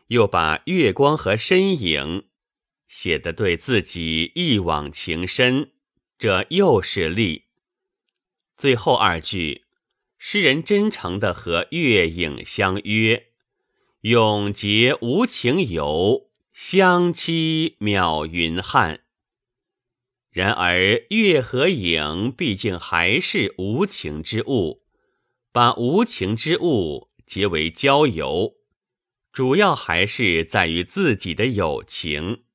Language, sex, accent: Chinese, male, native